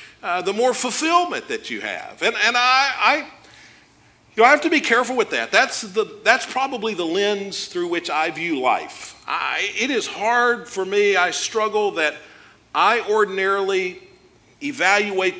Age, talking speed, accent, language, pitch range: 50-69, 170 wpm, American, English, 210-340 Hz